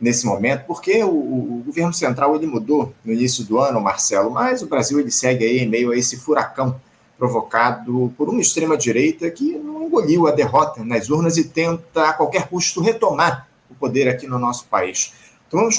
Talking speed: 180 wpm